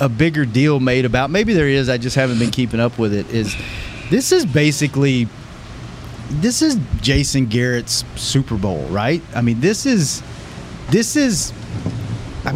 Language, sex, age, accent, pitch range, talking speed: English, male, 30-49, American, 125-175 Hz, 160 wpm